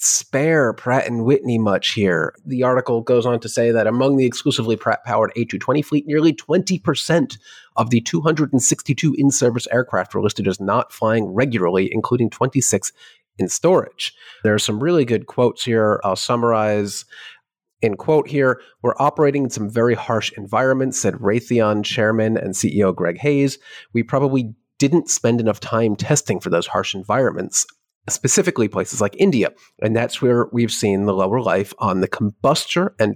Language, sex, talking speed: English, male, 160 wpm